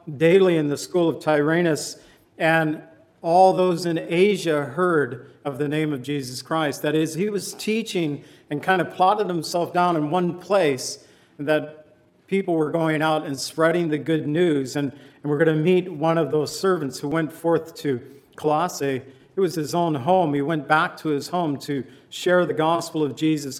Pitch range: 145-175 Hz